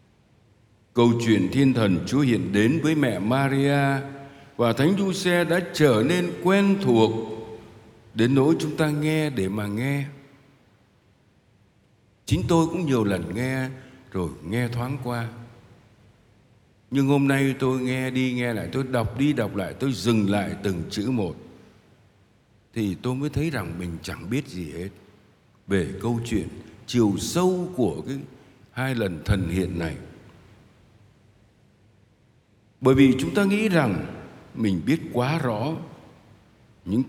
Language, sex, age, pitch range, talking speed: Vietnamese, male, 60-79, 105-140 Hz, 145 wpm